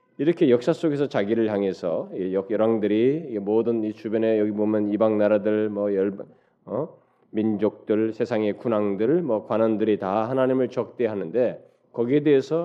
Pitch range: 105-140 Hz